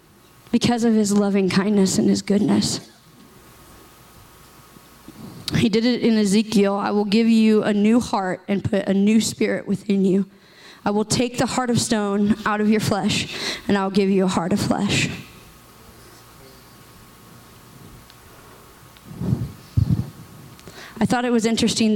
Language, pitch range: English, 195-230 Hz